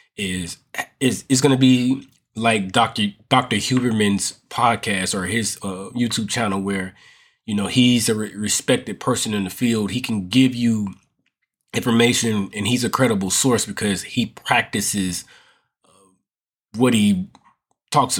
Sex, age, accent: male, 20-39, American